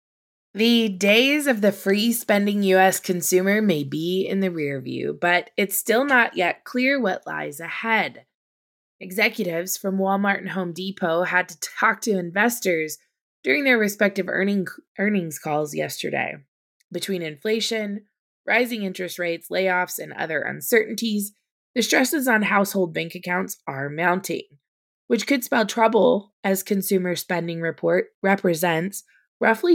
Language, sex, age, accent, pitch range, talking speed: English, female, 20-39, American, 170-220 Hz, 135 wpm